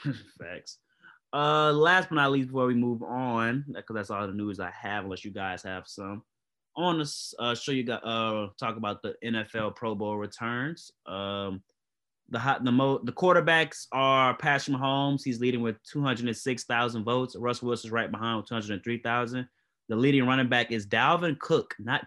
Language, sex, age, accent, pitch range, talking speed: English, male, 20-39, American, 115-140 Hz, 200 wpm